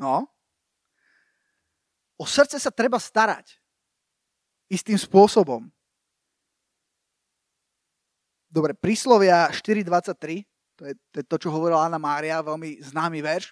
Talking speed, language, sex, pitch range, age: 95 wpm, Slovak, male, 170-225 Hz, 30-49